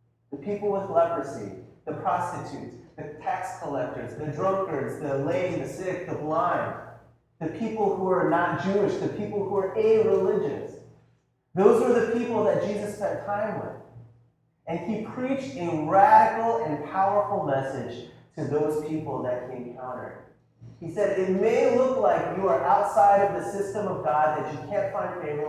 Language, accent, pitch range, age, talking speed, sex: English, American, 140-215 Hz, 30-49, 165 wpm, male